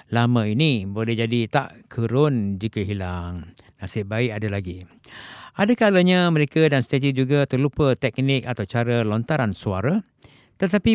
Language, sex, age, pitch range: Japanese, male, 50-69, 120-155 Hz